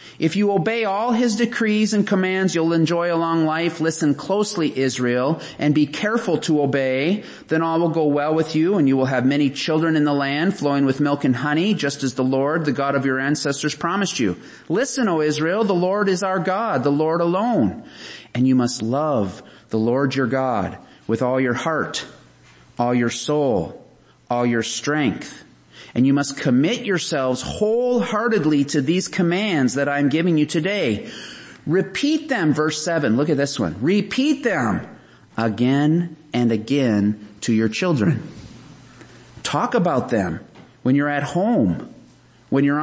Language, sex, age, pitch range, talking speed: English, male, 30-49, 135-180 Hz, 170 wpm